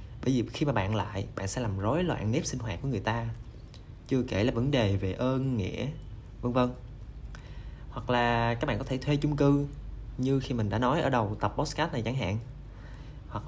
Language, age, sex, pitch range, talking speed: Vietnamese, 20-39, male, 110-135 Hz, 220 wpm